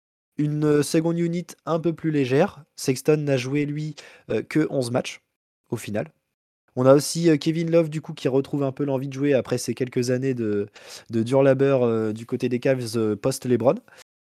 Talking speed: 200 wpm